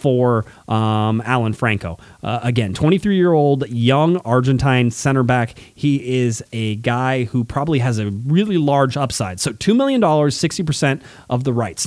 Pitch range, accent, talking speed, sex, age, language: 120-165 Hz, American, 155 wpm, male, 30-49, English